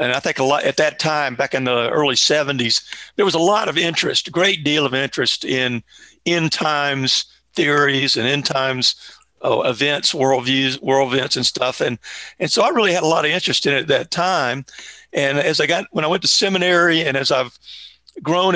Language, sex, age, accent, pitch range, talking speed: English, male, 50-69, American, 135-170 Hz, 215 wpm